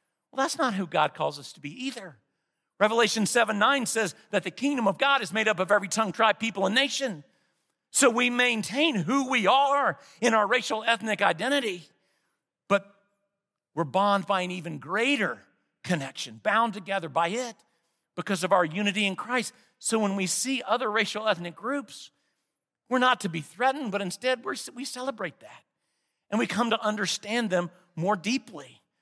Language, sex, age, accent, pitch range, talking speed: English, male, 50-69, American, 195-250 Hz, 170 wpm